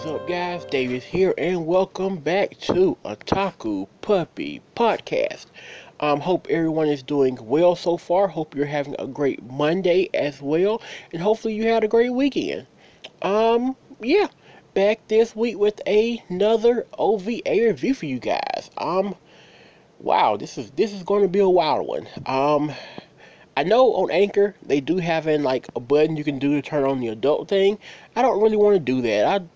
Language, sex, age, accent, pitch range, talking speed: English, male, 30-49, American, 150-210 Hz, 180 wpm